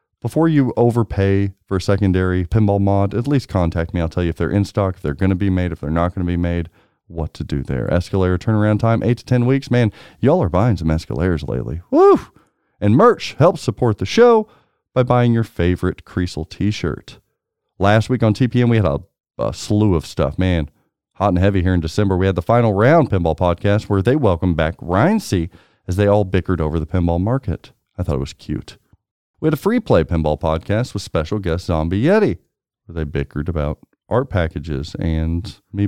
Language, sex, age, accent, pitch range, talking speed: English, male, 40-59, American, 85-120 Hz, 210 wpm